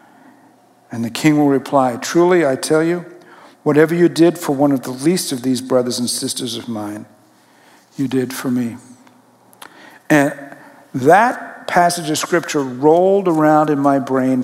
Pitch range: 140-195 Hz